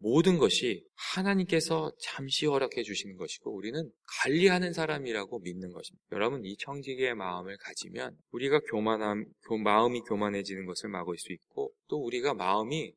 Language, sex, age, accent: Korean, male, 20-39, native